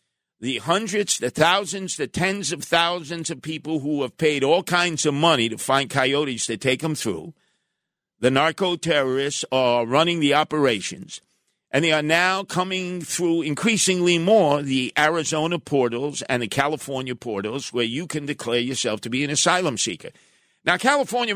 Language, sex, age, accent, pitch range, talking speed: English, male, 50-69, American, 135-180 Hz, 160 wpm